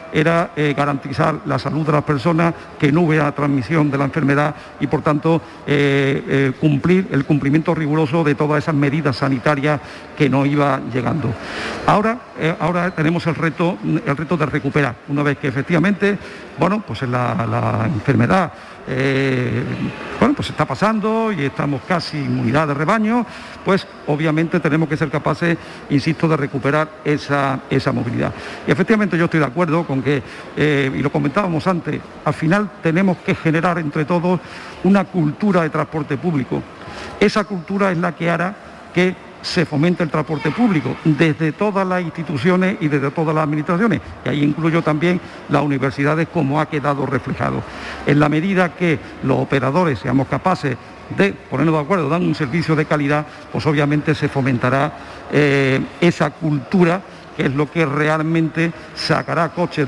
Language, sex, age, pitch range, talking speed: Spanish, male, 50-69, 145-170 Hz, 160 wpm